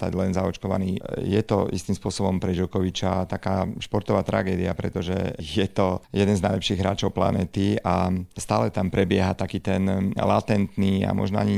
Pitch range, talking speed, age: 95-100 Hz, 150 wpm, 40-59